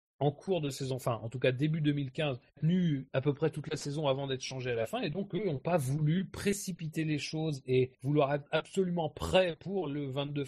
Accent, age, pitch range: French, 30-49, 115-155 Hz